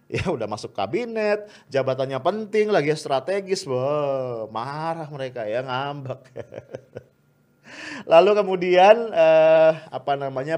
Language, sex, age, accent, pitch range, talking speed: English, male, 30-49, Indonesian, 125-160 Hz, 100 wpm